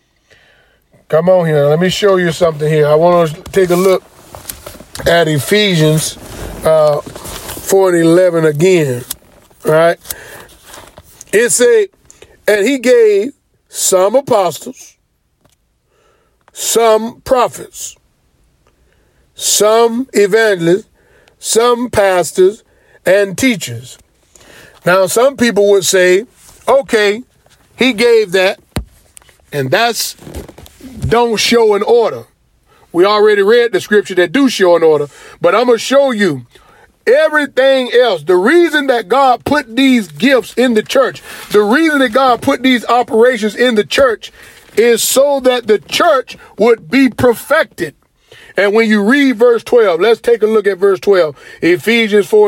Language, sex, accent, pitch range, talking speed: English, male, American, 185-295 Hz, 130 wpm